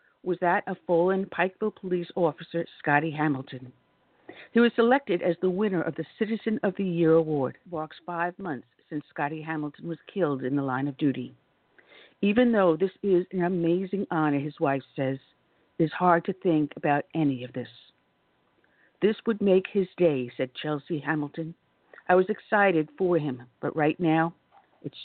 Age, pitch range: 60-79, 150-195 Hz